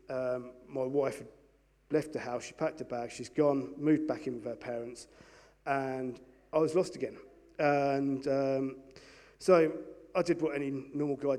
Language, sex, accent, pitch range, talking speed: English, male, British, 125-150 Hz, 175 wpm